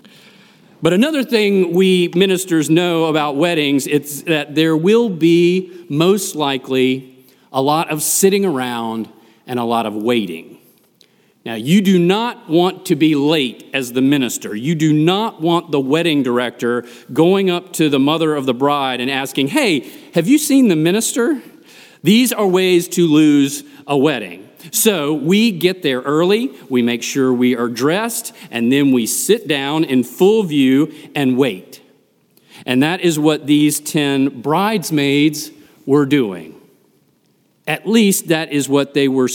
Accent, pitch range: American, 140-180 Hz